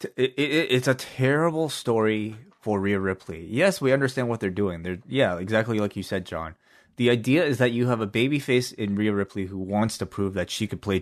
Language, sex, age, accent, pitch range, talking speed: English, male, 20-39, American, 95-125 Hz, 230 wpm